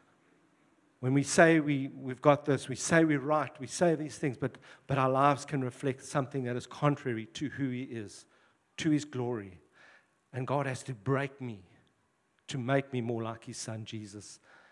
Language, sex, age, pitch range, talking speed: English, male, 50-69, 130-165 Hz, 185 wpm